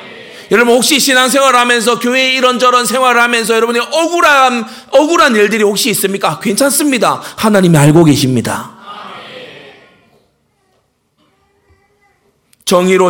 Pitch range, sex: 185-290 Hz, male